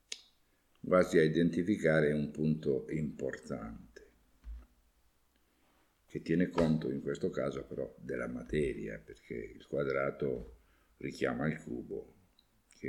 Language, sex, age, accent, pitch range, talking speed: Italian, male, 50-69, native, 75-90 Hz, 100 wpm